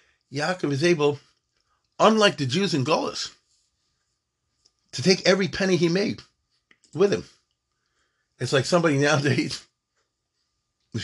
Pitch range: 120-175 Hz